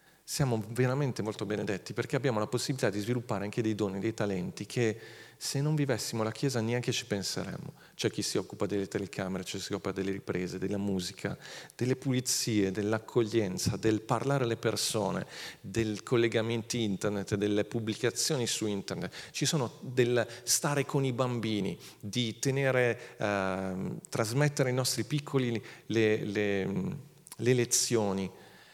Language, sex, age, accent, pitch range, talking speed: Italian, male, 40-59, native, 105-135 Hz, 150 wpm